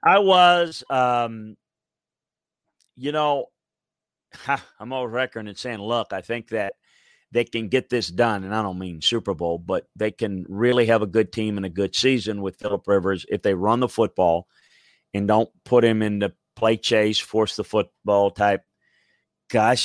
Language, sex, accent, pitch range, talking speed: English, male, American, 100-120 Hz, 175 wpm